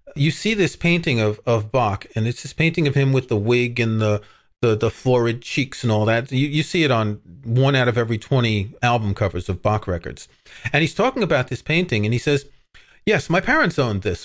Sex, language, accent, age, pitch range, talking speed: male, English, American, 40-59, 110-150 Hz, 225 wpm